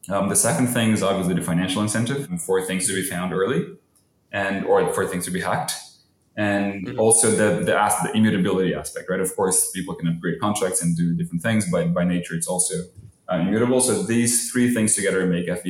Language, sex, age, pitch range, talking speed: English, male, 20-39, 90-105 Hz, 205 wpm